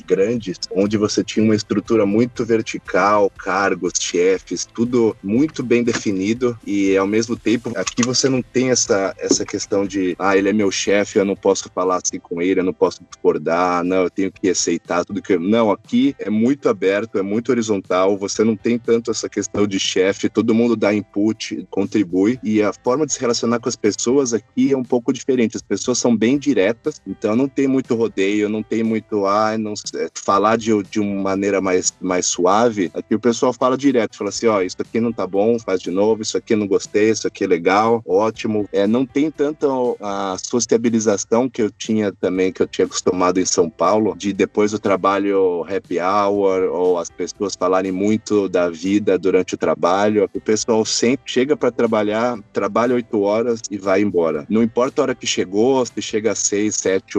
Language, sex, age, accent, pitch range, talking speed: Portuguese, male, 20-39, Brazilian, 100-120 Hz, 200 wpm